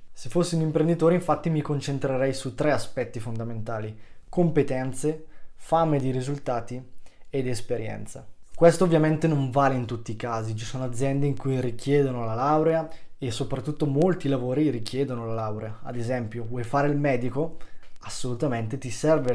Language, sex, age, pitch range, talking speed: Italian, male, 20-39, 125-150 Hz, 150 wpm